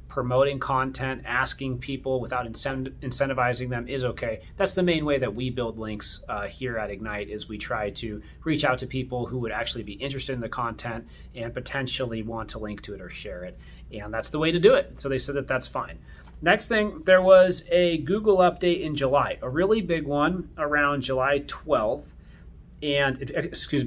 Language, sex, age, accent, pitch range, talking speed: English, male, 30-49, American, 115-155 Hz, 195 wpm